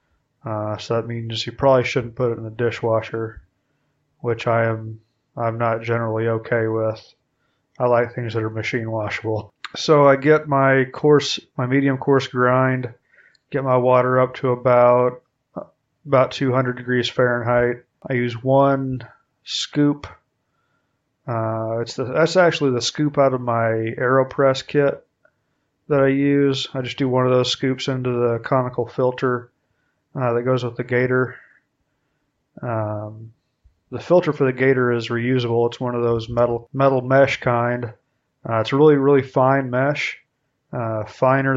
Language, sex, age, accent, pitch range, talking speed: English, male, 20-39, American, 115-135 Hz, 155 wpm